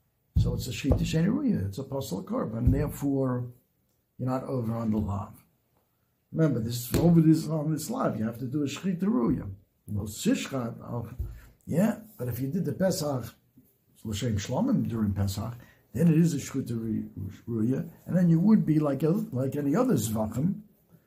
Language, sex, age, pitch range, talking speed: English, male, 60-79, 120-170 Hz, 175 wpm